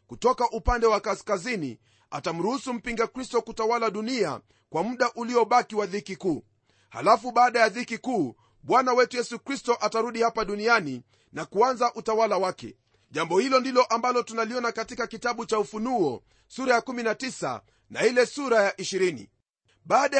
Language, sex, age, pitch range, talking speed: Swahili, male, 40-59, 195-245 Hz, 145 wpm